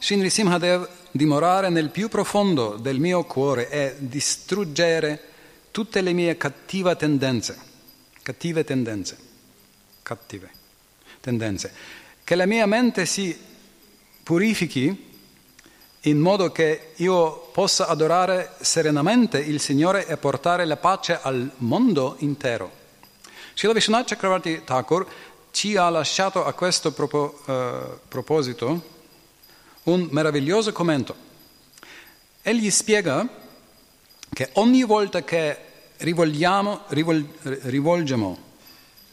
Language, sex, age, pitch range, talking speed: Italian, male, 40-59, 145-185 Hz, 90 wpm